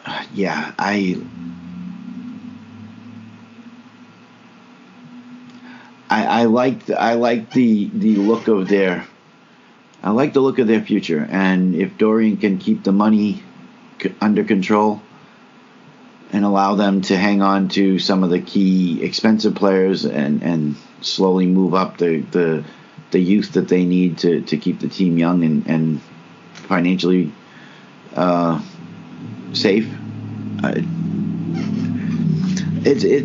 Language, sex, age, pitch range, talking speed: English, male, 50-69, 90-130 Hz, 120 wpm